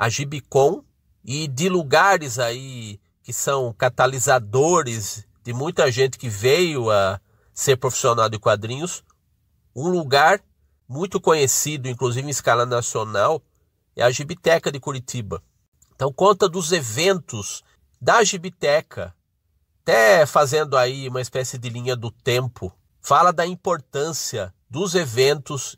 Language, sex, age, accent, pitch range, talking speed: Portuguese, male, 50-69, Brazilian, 115-155 Hz, 120 wpm